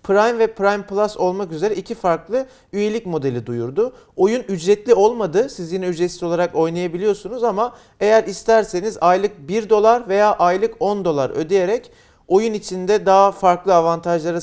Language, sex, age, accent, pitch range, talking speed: Turkish, male, 40-59, native, 170-215 Hz, 145 wpm